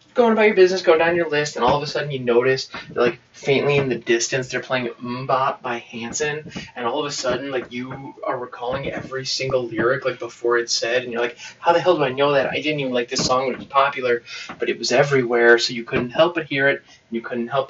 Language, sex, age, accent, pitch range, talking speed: English, male, 20-39, American, 120-155 Hz, 260 wpm